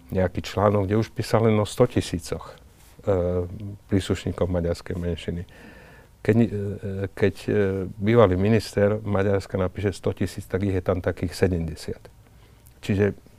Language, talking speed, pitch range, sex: Slovak, 135 wpm, 85-100 Hz, male